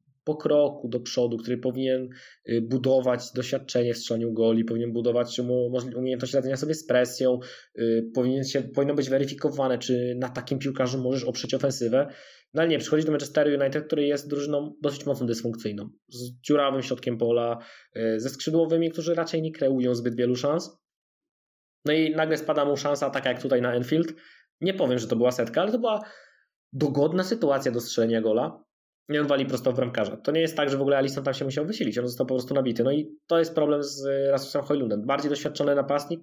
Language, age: Polish, 20-39